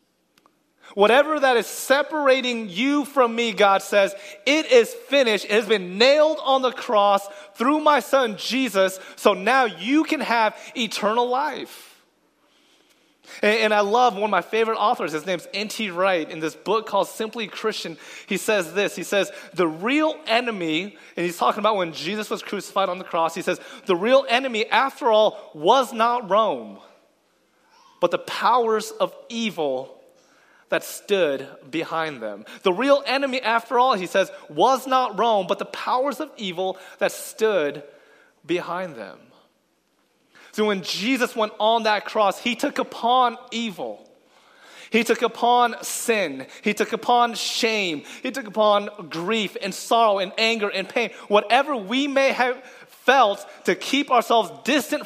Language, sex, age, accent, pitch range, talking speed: English, male, 30-49, American, 200-260 Hz, 155 wpm